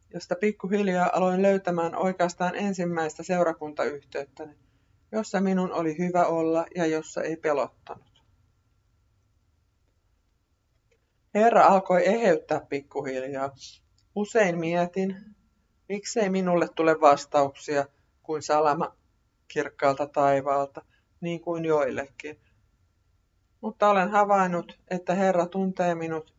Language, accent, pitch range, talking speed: Finnish, native, 115-185 Hz, 90 wpm